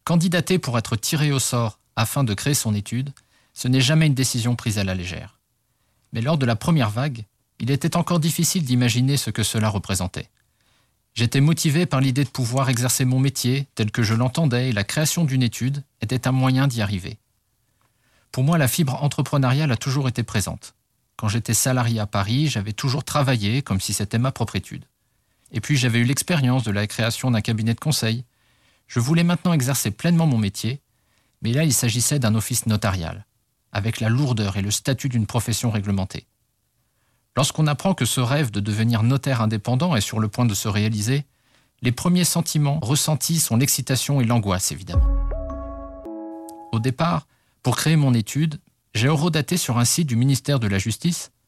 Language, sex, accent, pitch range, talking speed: French, male, French, 110-145 Hz, 185 wpm